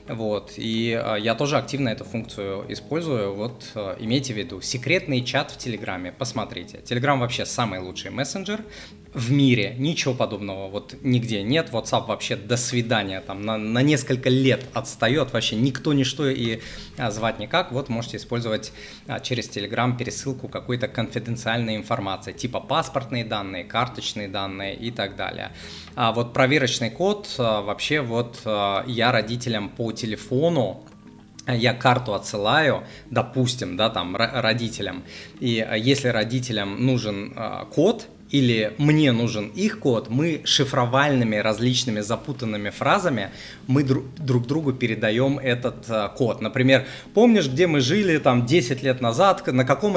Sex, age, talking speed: male, 20-39, 135 wpm